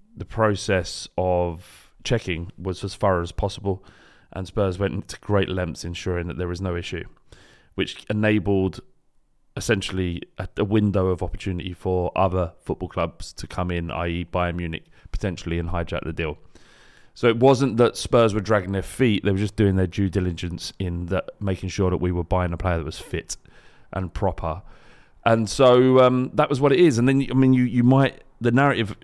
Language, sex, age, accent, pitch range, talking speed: English, male, 30-49, British, 90-105 Hz, 190 wpm